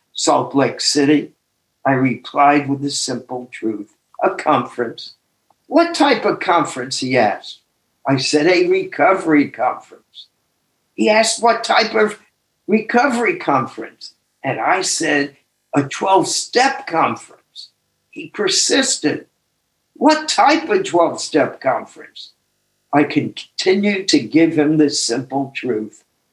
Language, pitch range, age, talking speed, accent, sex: English, 135-190 Hz, 60-79, 115 wpm, American, male